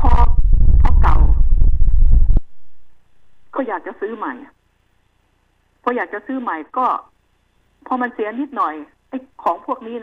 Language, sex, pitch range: Thai, female, 175-245 Hz